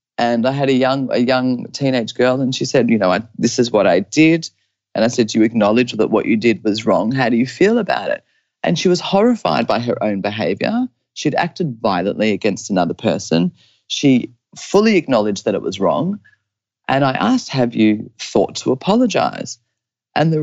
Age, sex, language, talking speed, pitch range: 30-49, female, English, 205 wpm, 110-145 Hz